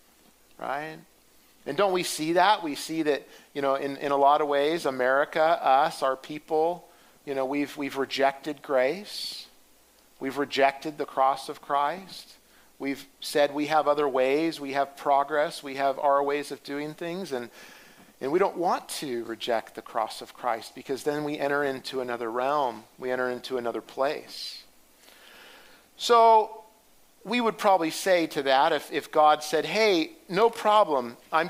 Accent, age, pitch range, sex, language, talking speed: American, 50-69, 140-180 Hz, male, English, 165 wpm